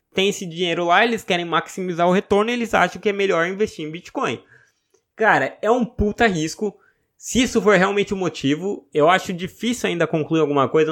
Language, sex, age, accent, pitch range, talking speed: Portuguese, male, 20-39, Brazilian, 140-190 Hz, 200 wpm